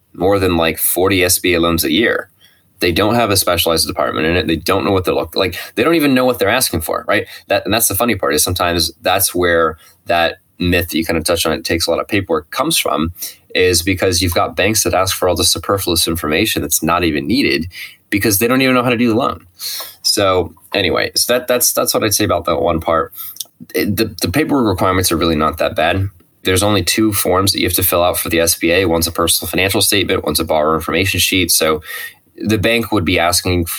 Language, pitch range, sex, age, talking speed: English, 80-100 Hz, male, 20-39, 240 wpm